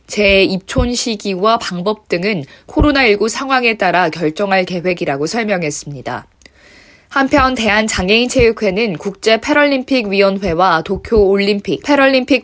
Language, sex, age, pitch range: Korean, female, 20-39, 185-245 Hz